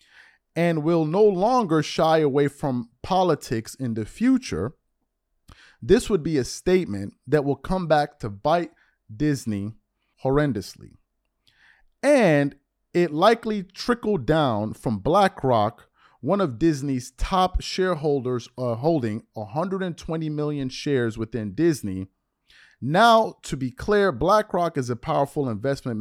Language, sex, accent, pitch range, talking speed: English, male, American, 125-175 Hz, 120 wpm